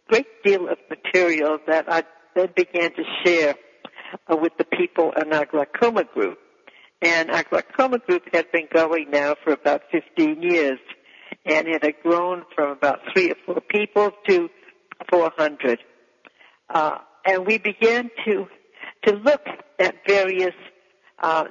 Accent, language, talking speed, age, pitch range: American, English, 140 wpm, 60-79, 155-205 Hz